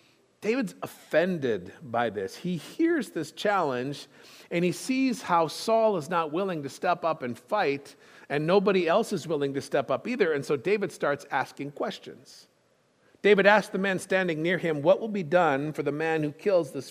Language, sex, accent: English, male, American